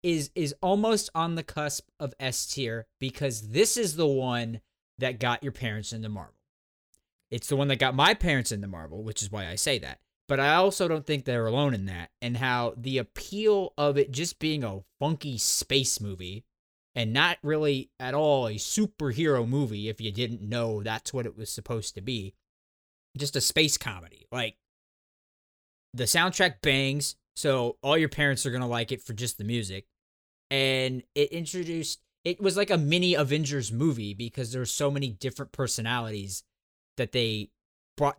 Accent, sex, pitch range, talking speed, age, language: American, male, 115-150 Hz, 180 wpm, 20-39, English